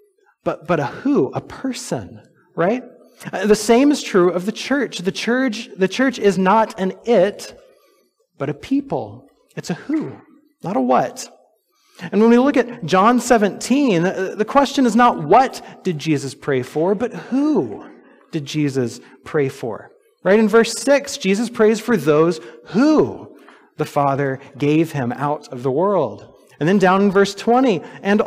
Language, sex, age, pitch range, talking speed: English, male, 30-49, 165-250 Hz, 165 wpm